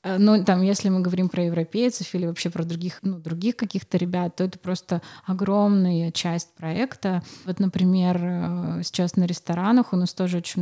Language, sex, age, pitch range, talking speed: Russian, female, 20-39, 175-195 Hz, 170 wpm